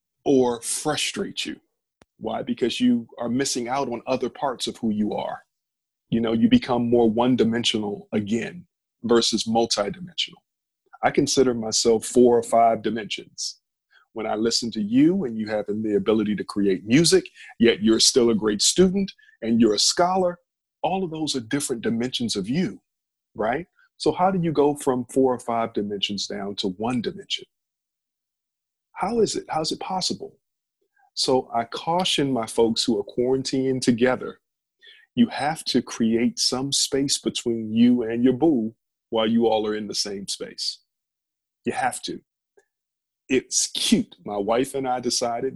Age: 40-59